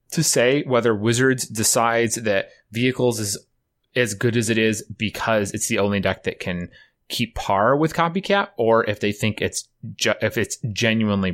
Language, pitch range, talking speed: English, 100-125 Hz, 175 wpm